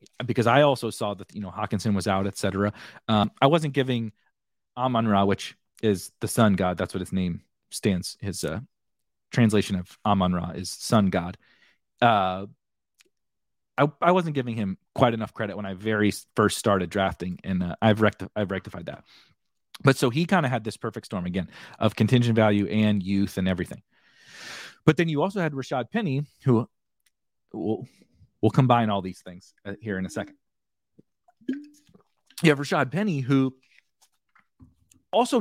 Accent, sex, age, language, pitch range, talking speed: American, male, 30-49, English, 100-135 Hz, 170 wpm